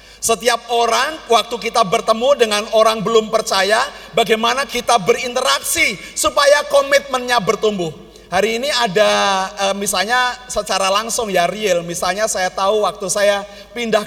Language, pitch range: Indonesian, 145-210 Hz